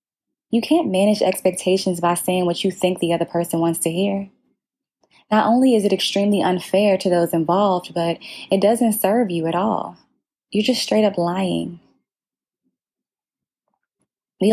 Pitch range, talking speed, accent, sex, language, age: 175-215 Hz, 155 wpm, American, female, English, 20-39